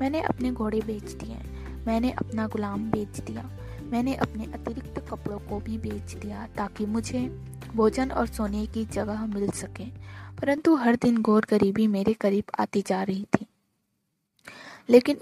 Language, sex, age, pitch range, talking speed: Hindi, female, 20-39, 200-240 Hz, 155 wpm